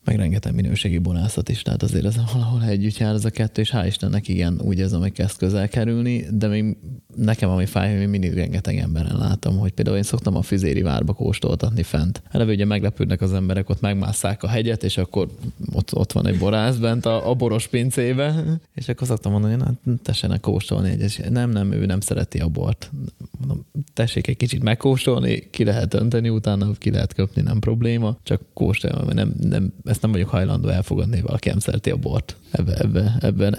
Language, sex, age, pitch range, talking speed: Hungarian, male, 20-39, 100-120 Hz, 200 wpm